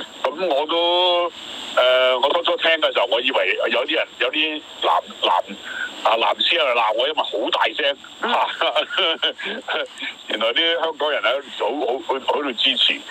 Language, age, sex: Chinese, 60-79, male